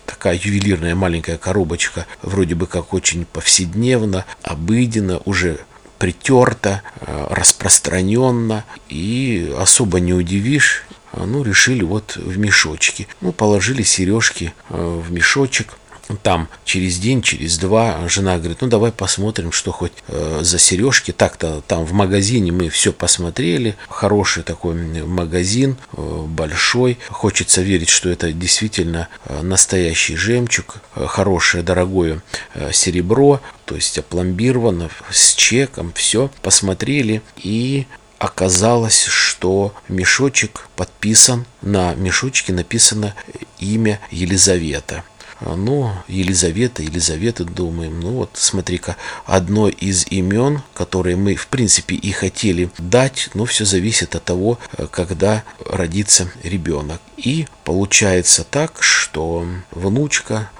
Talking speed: 110 wpm